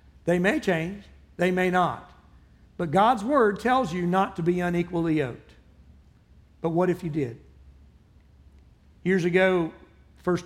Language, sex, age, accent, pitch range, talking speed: English, male, 60-79, American, 120-185 Hz, 140 wpm